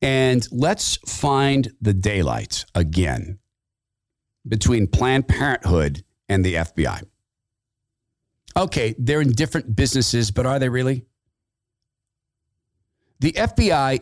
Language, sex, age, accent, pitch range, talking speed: English, male, 50-69, American, 105-145 Hz, 100 wpm